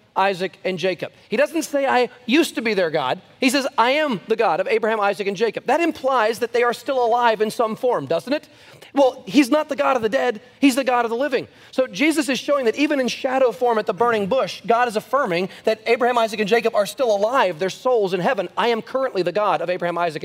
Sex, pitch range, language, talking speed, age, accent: male, 180-240 Hz, English, 250 wpm, 30-49, American